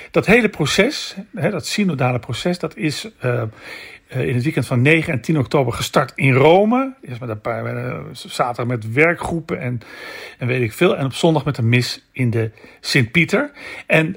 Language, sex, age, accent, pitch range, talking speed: Dutch, male, 50-69, Dutch, 125-185 Hz, 180 wpm